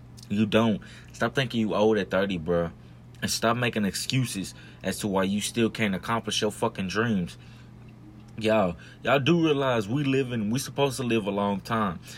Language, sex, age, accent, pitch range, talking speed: English, male, 20-39, American, 100-120 Hz, 180 wpm